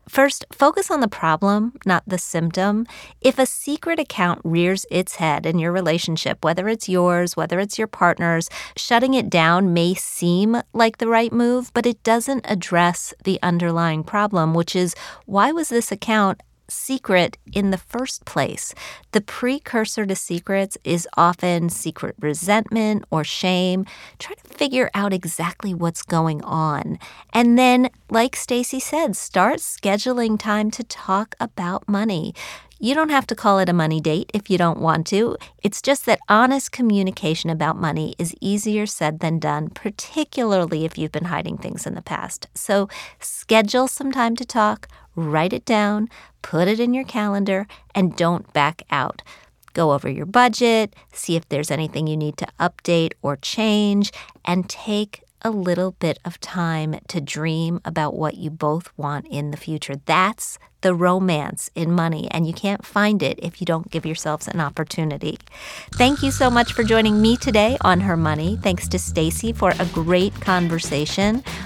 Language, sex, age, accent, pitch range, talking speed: English, female, 30-49, American, 165-220 Hz, 170 wpm